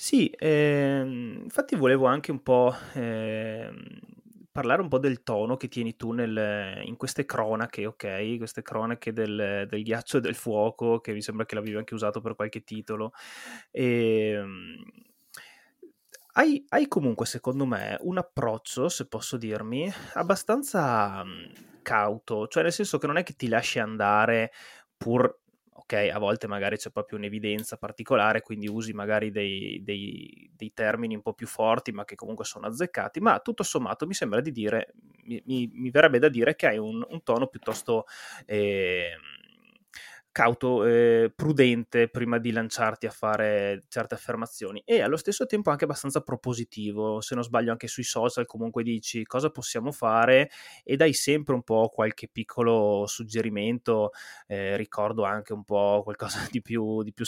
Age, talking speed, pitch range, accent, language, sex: 20-39, 160 wpm, 105-130 Hz, native, Italian, male